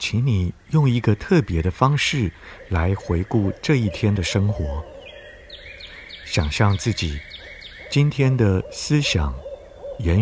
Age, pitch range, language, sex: 50-69, 85-120 Hz, Chinese, male